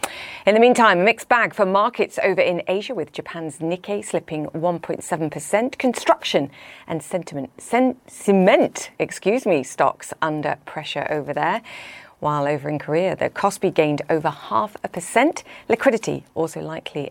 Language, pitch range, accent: English, 155-215 Hz, British